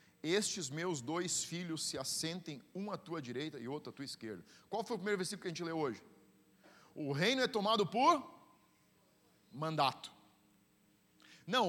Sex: male